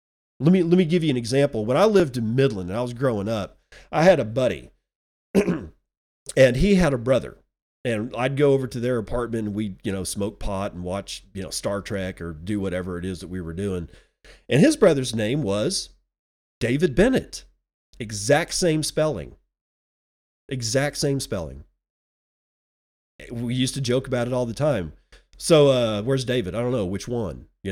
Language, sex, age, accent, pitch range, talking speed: English, male, 40-59, American, 95-140 Hz, 190 wpm